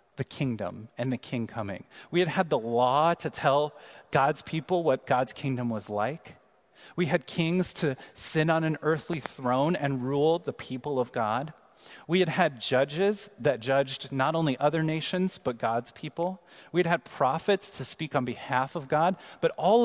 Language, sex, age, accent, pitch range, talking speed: English, male, 30-49, American, 130-180 Hz, 180 wpm